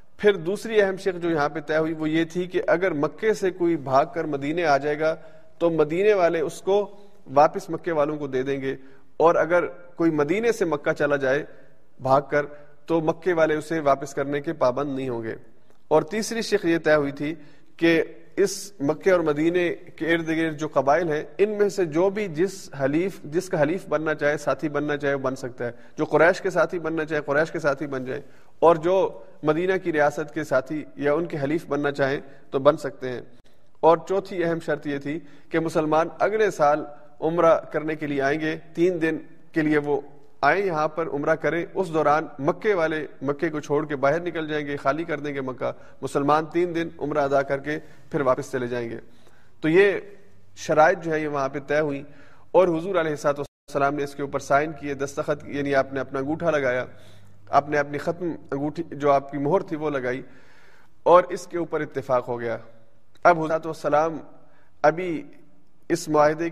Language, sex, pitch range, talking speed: Urdu, male, 145-170 Hz, 205 wpm